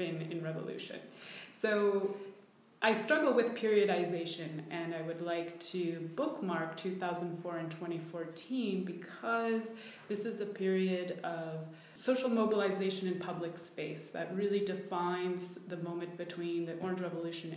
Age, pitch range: 20-39, 170-205 Hz